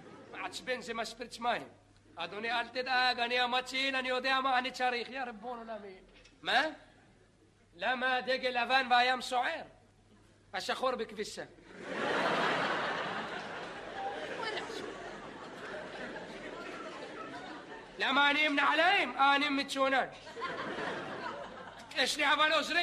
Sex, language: male, Hebrew